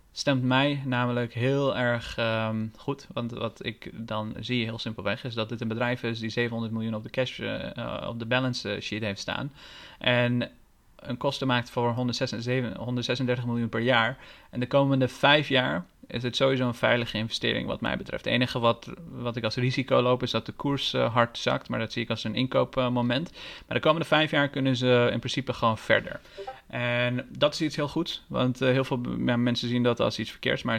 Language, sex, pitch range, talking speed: Dutch, male, 115-130 Hz, 205 wpm